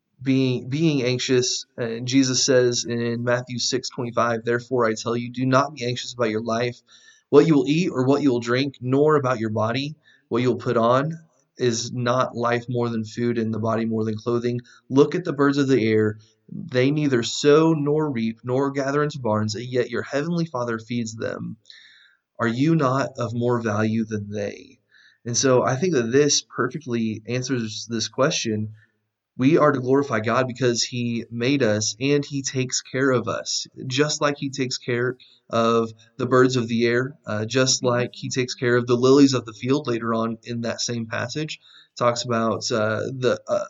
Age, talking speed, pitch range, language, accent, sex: 30-49, 195 wpm, 115-135 Hz, English, American, male